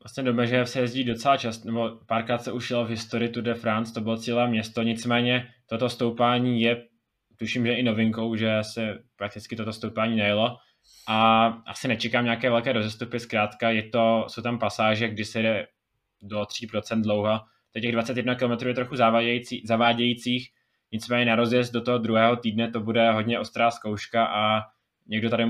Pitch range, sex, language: 110-120 Hz, male, Czech